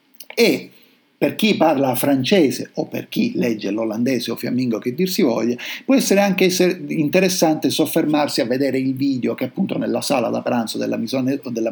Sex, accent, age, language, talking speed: male, native, 50-69, Italian, 170 wpm